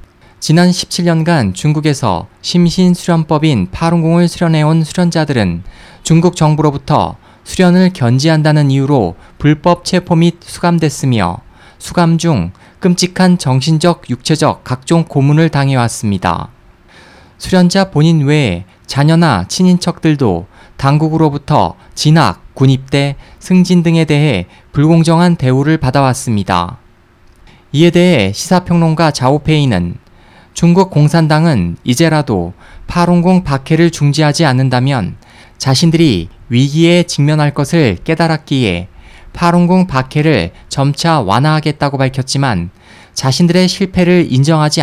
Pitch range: 125-170 Hz